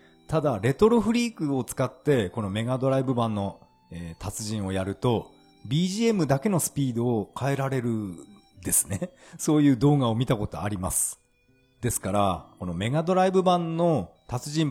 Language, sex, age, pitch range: Japanese, male, 40-59, 105-165 Hz